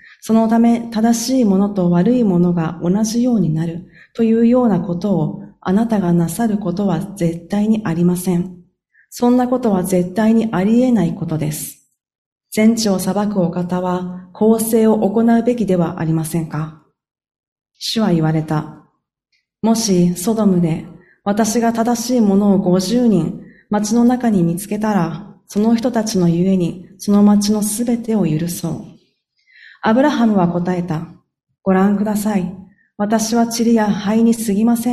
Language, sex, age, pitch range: Japanese, female, 40-59, 175-225 Hz